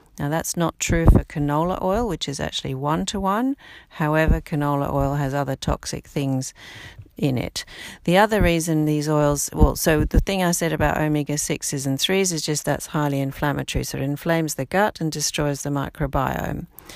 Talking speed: 175 wpm